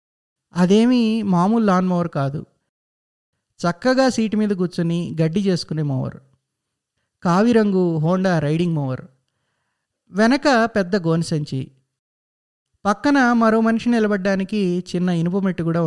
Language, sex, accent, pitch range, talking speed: Telugu, male, native, 150-220 Hz, 100 wpm